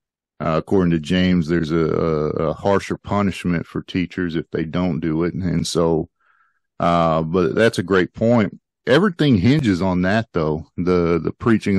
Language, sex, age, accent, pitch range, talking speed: English, male, 40-59, American, 85-100 Hz, 175 wpm